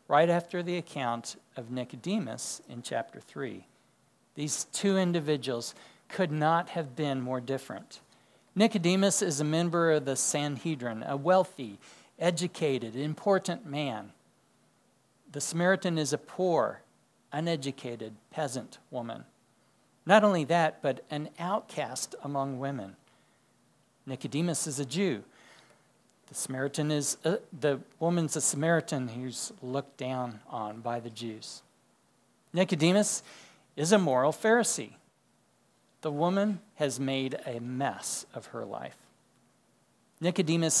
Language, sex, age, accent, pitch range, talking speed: English, male, 60-79, American, 130-175 Hz, 120 wpm